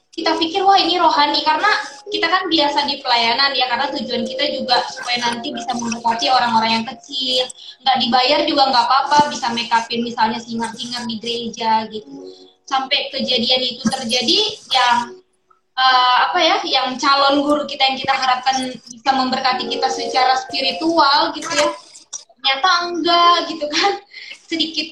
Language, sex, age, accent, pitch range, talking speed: Indonesian, female, 20-39, native, 245-320 Hz, 155 wpm